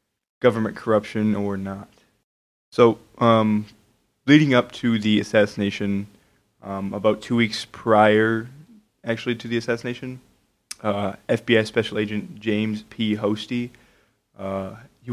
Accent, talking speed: American, 115 wpm